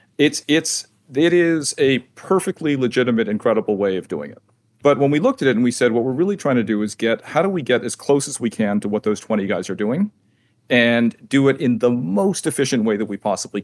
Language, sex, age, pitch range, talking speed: English, male, 40-59, 105-125 Hz, 245 wpm